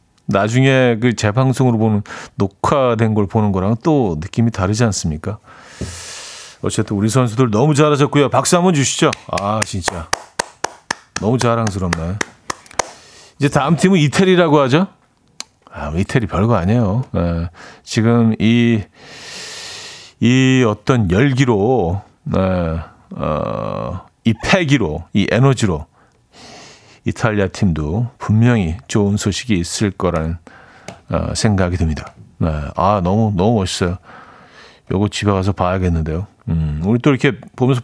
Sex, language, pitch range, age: male, Korean, 95-130 Hz, 40-59